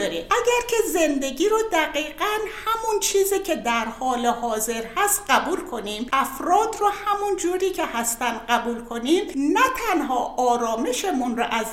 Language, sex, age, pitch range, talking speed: Persian, female, 60-79, 235-345 Hz, 140 wpm